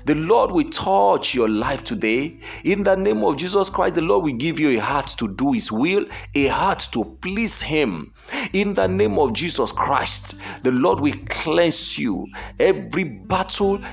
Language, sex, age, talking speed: English, male, 50-69, 180 wpm